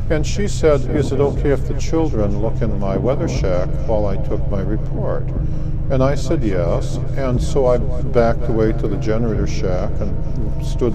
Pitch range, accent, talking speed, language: 105-135 Hz, American, 185 wpm, English